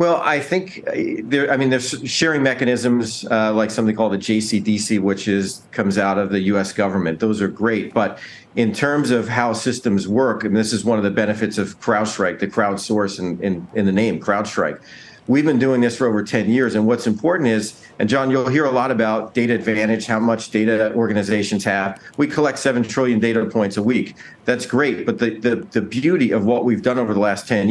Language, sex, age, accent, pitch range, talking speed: English, male, 50-69, American, 105-125 Hz, 215 wpm